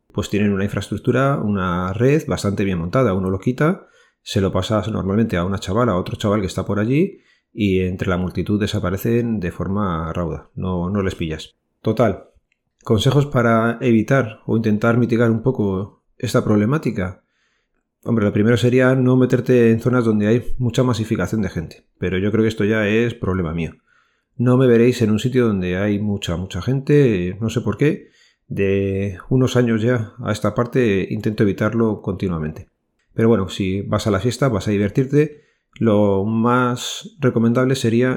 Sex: male